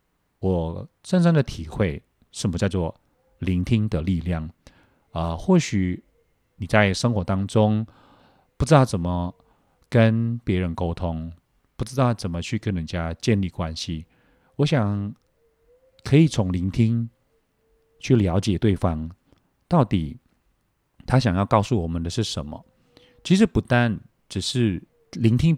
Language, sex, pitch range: Chinese, male, 90-125 Hz